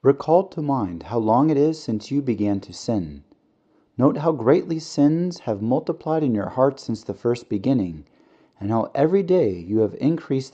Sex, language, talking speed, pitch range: male, English, 180 wpm, 105-155 Hz